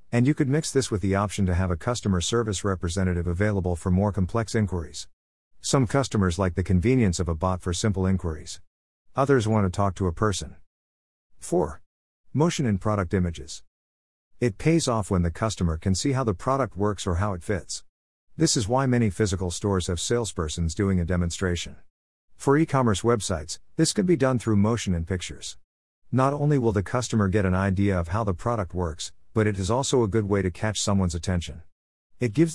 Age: 50-69